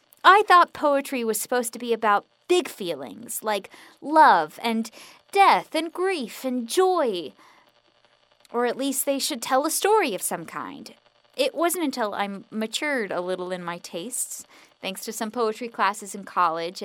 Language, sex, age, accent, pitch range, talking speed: English, female, 10-29, American, 200-270 Hz, 165 wpm